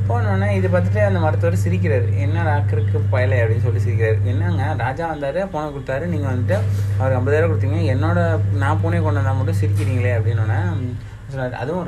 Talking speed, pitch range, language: 170 wpm, 100-110 Hz, Tamil